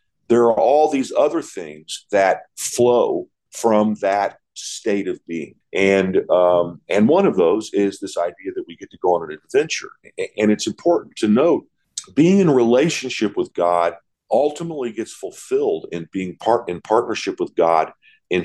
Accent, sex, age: American, male, 50-69